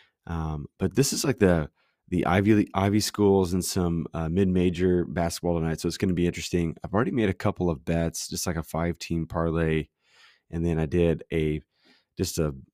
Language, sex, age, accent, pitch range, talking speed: English, male, 30-49, American, 80-95 Hz, 195 wpm